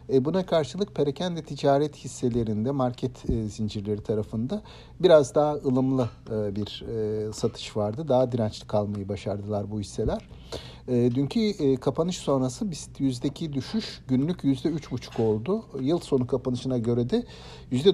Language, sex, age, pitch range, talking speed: Turkish, male, 60-79, 120-145 Hz, 120 wpm